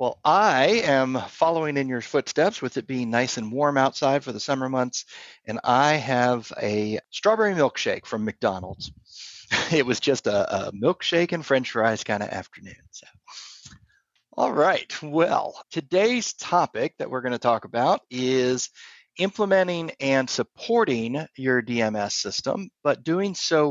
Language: English